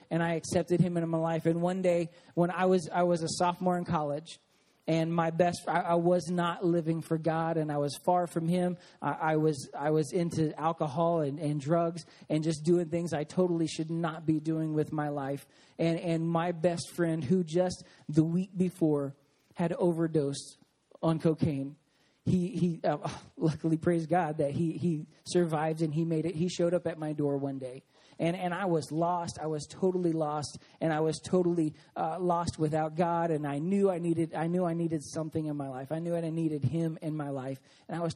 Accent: American